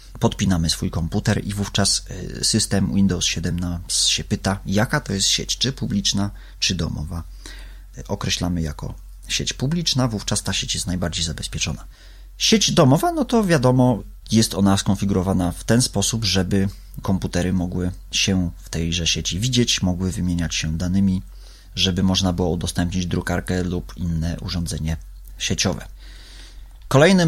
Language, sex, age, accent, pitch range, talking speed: Polish, male, 30-49, native, 90-110 Hz, 135 wpm